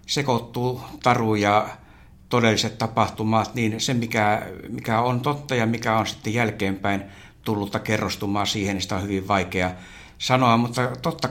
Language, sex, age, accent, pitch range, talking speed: Finnish, male, 60-79, native, 95-115 Hz, 145 wpm